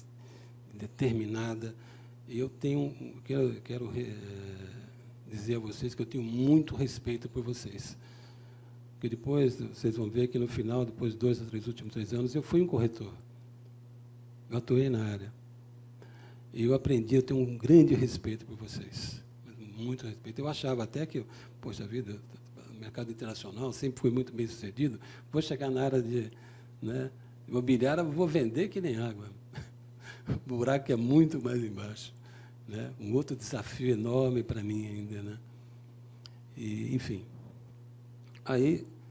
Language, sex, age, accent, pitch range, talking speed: Portuguese, male, 60-79, Brazilian, 115-130 Hz, 150 wpm